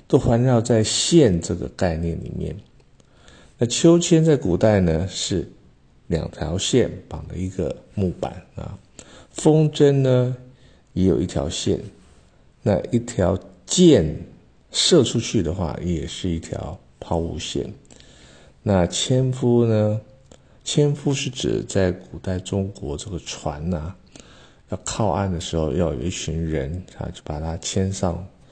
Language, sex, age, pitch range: Chinese, male, 50-69, 85-110 Hz